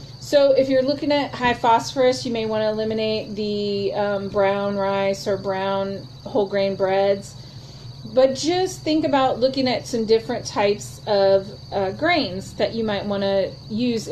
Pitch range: 180-240 Hz